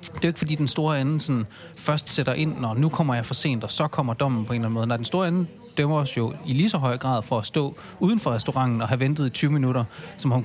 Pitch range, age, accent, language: 125-160 Hz, 30-49, native, Danish